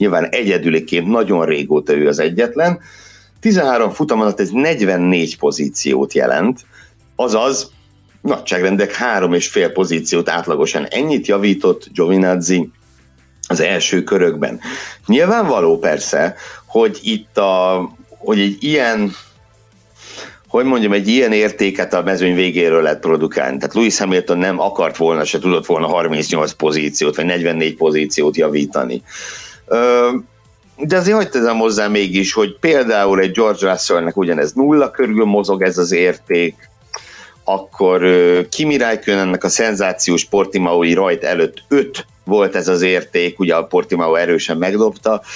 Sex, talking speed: male, 125 wpm